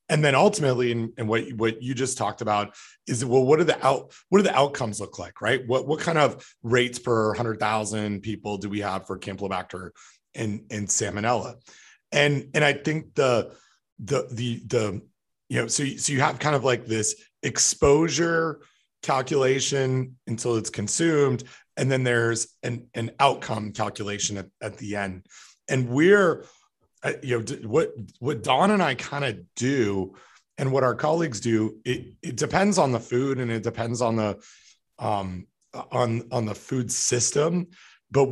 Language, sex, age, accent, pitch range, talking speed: English, male, 30-49, American, 110-140 Hz, 175 wpm